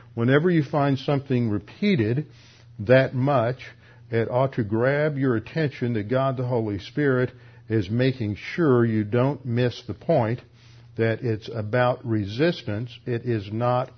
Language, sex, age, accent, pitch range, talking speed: English, male, 60-79, American, 115-125 Hz, 140 wpm